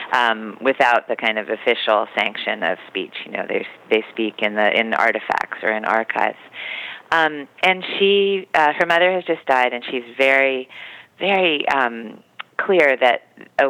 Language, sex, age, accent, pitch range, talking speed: English, female, 40-59, American, 115-140 Hz, 170 wpm